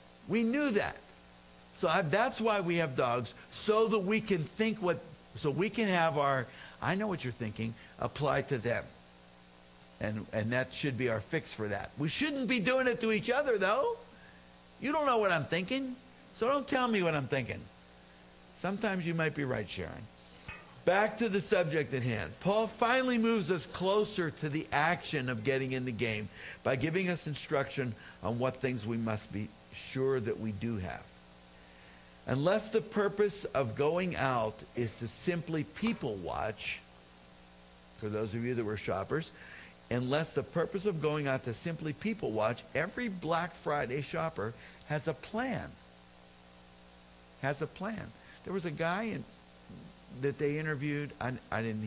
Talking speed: 170 wpm